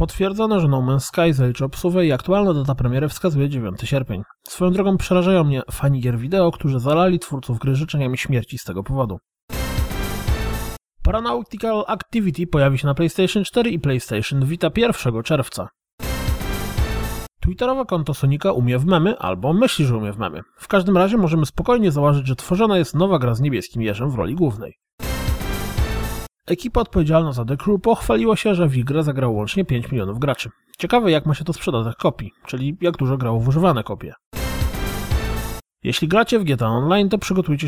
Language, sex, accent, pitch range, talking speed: Polish, male, native, 120-180 Hz, 170 wpm